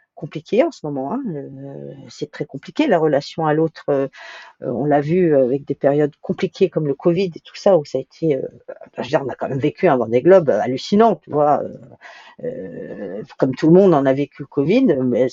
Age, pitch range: 50-69, 135-180 Hz